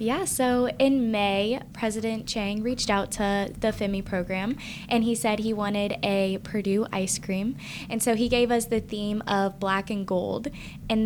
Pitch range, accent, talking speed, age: 195-225 Hz, American, 180 wpm, 10-29